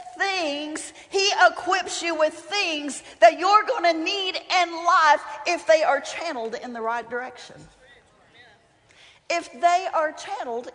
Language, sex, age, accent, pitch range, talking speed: English, female, 50-69, American, 275-355 Hz, 140 wpm